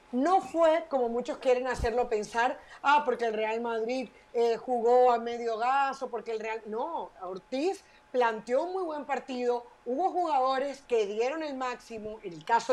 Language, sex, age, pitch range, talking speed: Spanish, female, 30-49, 230-275 Hz, 170 wpm